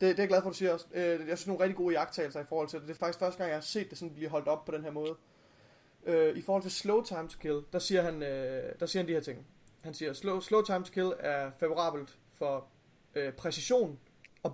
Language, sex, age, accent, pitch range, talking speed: Danish, male, 30-49, native, 145-180 Hz, 280 wpm